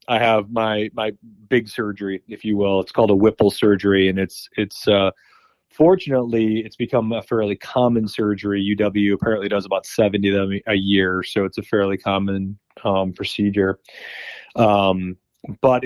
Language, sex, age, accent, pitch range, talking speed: English, male, 30-49, American, 95-115 Hz, 165 wpm